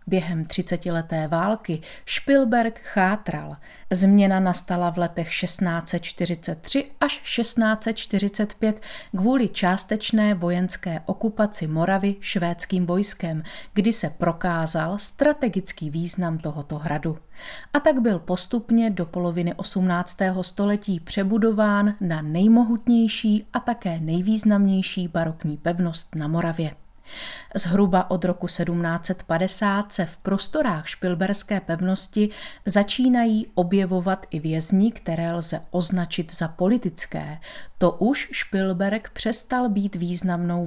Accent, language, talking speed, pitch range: native, Czech, 100 wpm, 170-215 Hz